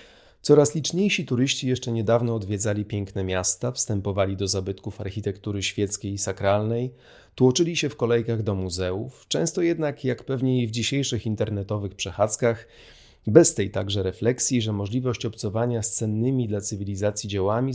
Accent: native